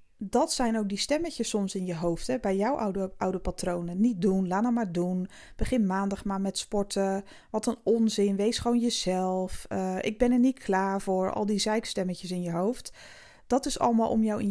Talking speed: 205 wpm